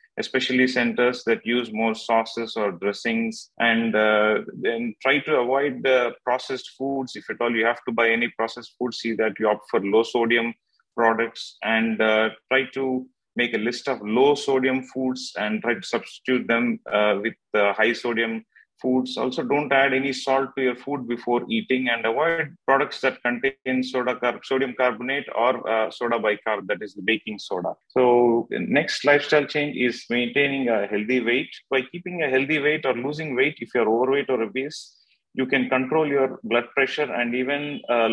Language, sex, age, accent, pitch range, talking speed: English, male, 30-49, Indian, 115-135 Hz, 185 wpm